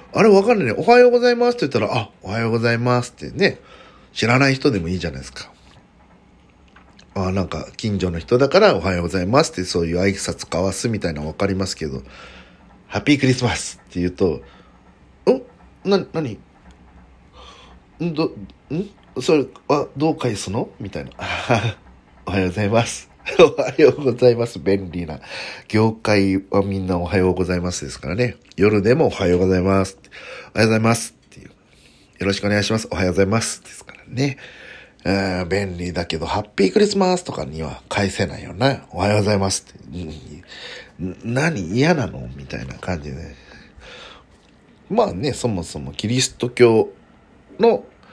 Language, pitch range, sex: Japanese, 90-120 Hz, male